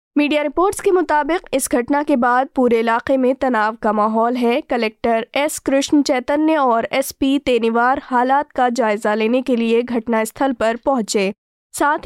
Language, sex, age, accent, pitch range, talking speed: Hindi, female, 20-39, native, 235-280 Hz, 165 wpm